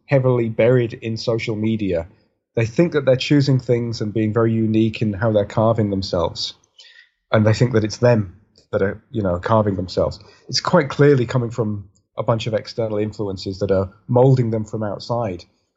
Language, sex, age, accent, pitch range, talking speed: English, male, 30-49, British, 100-125 Hz, 185 wpm